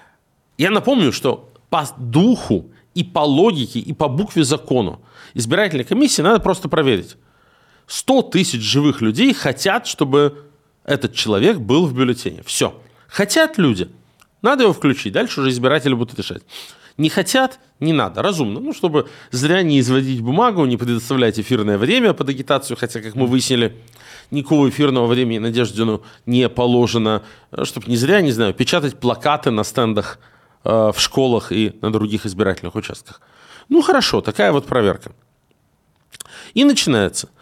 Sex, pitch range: male, 120-170 Hz